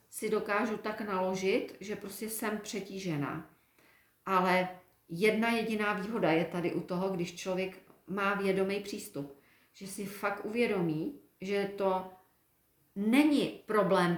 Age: 40-59